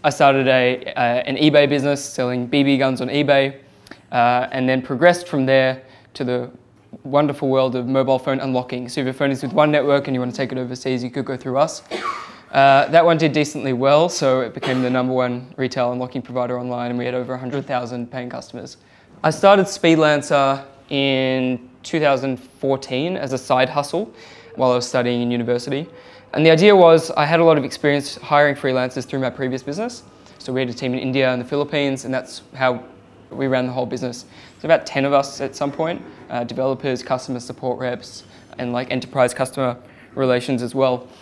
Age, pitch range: 20-39, 125-140 Hz